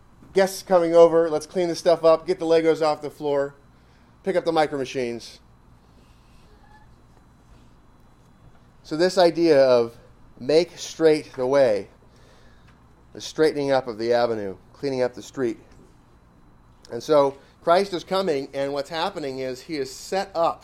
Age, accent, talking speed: 30-49, American, 145 wpm